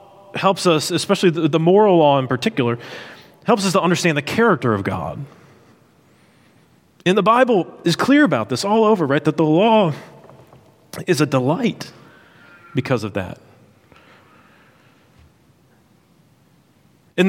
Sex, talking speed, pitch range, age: male, 125 wpm, 130-170 Hz, 30-49